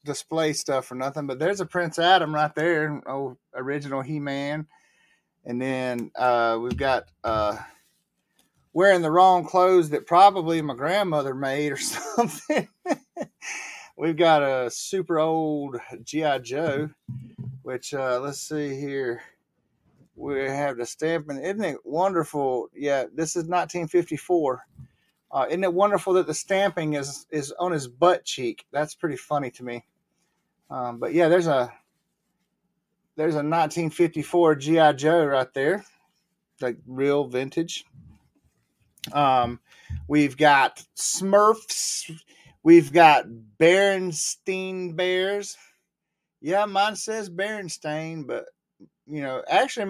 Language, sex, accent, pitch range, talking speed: English, male, American, 140-185 Hz, 125 wpm